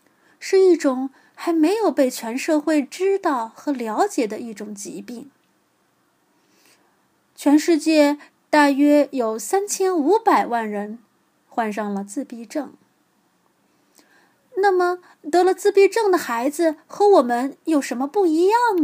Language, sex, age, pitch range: Chinese, female, 20-39, 230-355 Hz